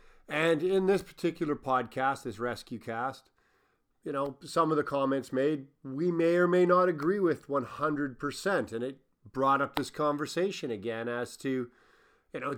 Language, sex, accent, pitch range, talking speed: English, male, American, 130-160 Hz, 160 wpm